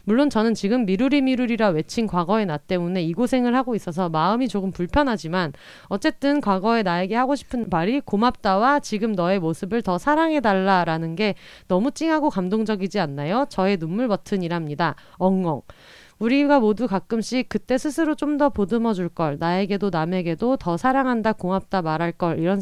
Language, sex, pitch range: Korean, female, 175-245 Hz